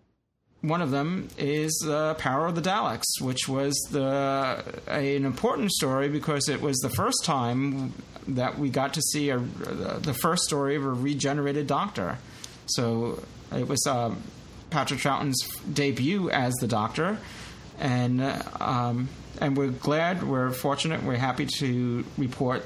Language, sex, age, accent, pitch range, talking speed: English, male, 30-49, American, 125-150 Hz, 160 wpm